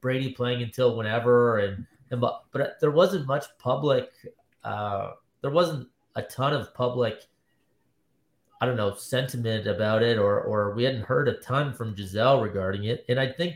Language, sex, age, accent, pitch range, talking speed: English, male, 30-49, American, 115-140 Hz, 175 wpm